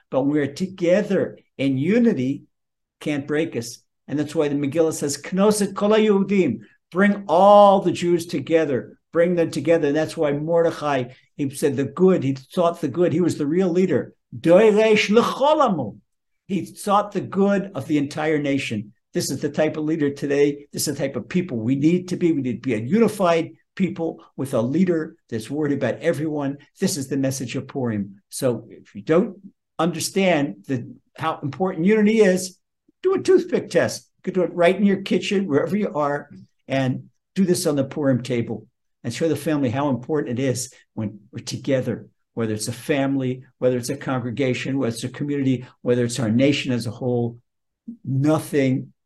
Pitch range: 135-180 Hz